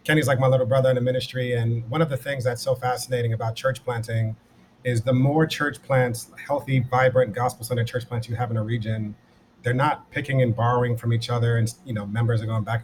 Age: 30-49